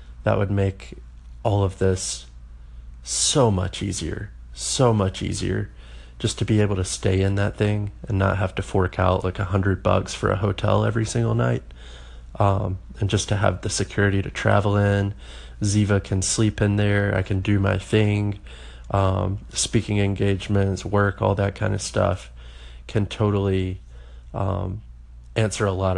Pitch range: 65-105 Hz